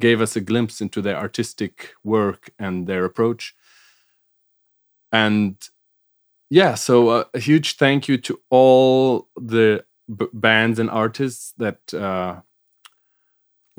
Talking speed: 120 wpm